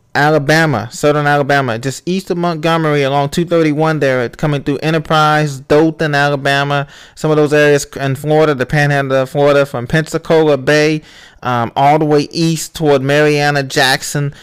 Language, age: English, 20-39